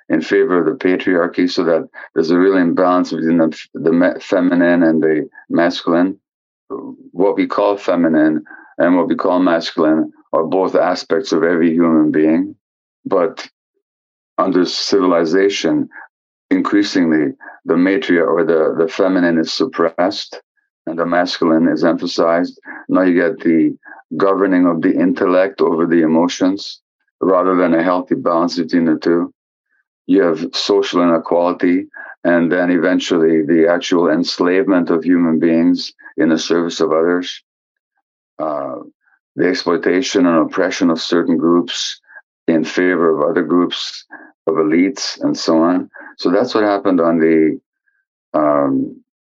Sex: male